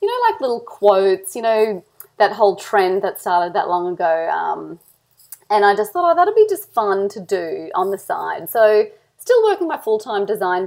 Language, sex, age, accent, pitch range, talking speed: English, female, 30-49, Australian, 180-235 Hz, 205 wpm